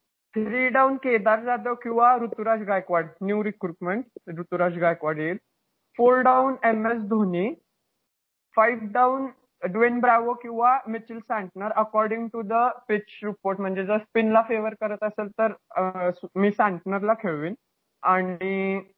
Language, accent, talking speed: Marathi, native, 125 wpm